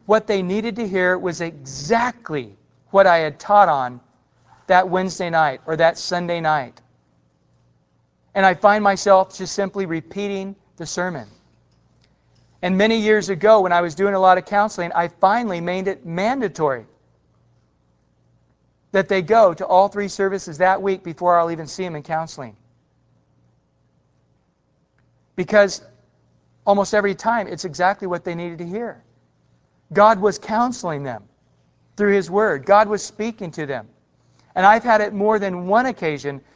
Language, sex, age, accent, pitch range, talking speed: English, male, 40-59, American, 155-205 Hz, 150 wpm